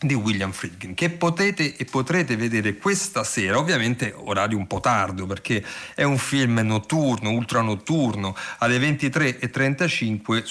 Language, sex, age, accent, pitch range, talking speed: Italian, male, 40-59, native, 105-135 Hz, 130 wpm